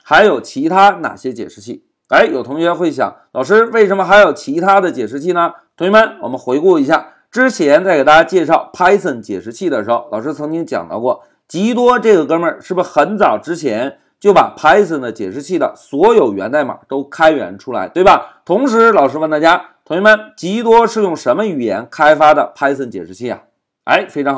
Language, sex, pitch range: Chinese, male, 160-230 Hz